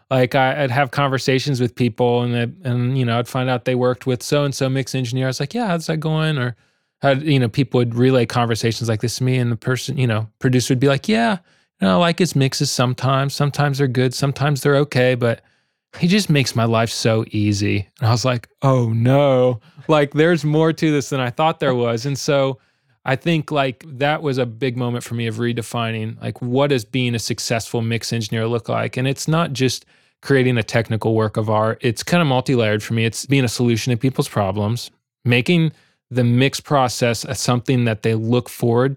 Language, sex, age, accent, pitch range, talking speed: English, male, 20-39, American, 115-140 Hz, 220 wpm